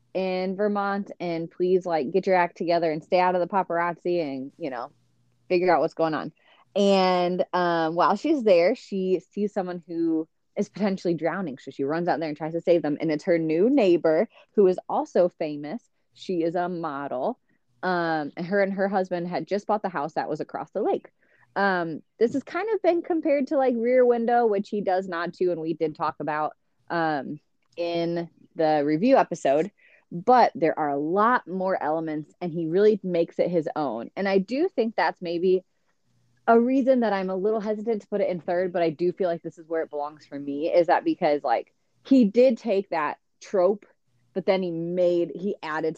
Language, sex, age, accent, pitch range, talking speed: English, female, 20-39, American, 160-200 Hz, 205 wpm